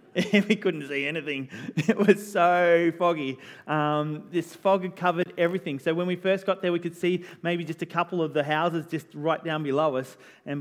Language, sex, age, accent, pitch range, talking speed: English, male, 30-49, Australian, 145-190 Hz, 205 wpm